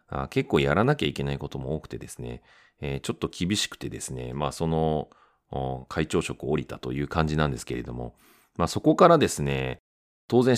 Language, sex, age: Japanese, male, 40-59